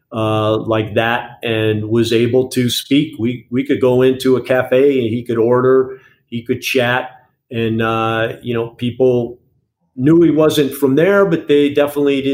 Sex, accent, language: male, American, English